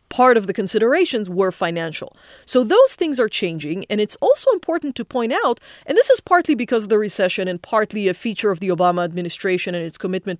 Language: English